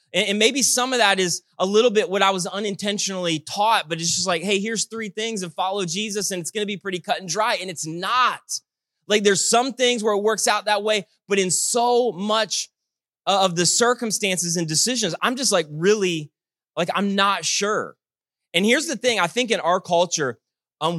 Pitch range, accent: 160-210 Hz, American